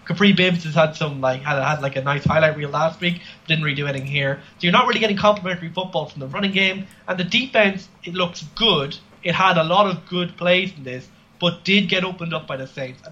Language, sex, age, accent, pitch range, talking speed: English, male, 20-39, Irish, 145-185 Hz, 255 wpm